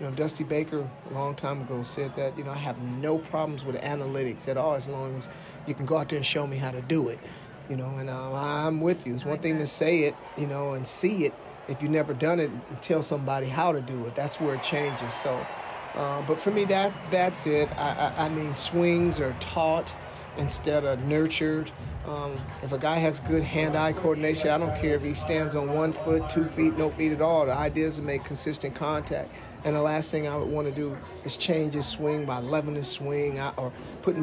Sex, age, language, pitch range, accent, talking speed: male, 40-59, English, 140-155 Hz, American, 235 wpm